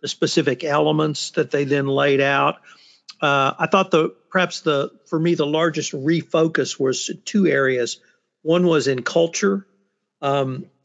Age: 50-69